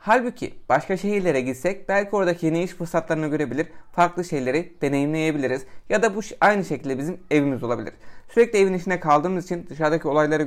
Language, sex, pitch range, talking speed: Turkish, male, 140-180 Hz, 160 wpm